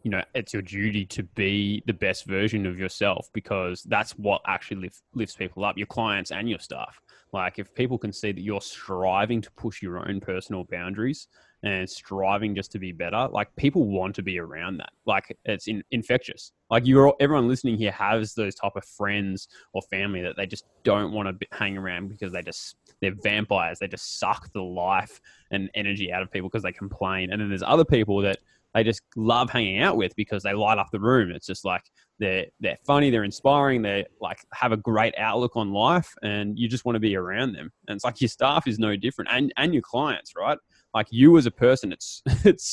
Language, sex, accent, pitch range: English, male, Australian, 100-120 Hz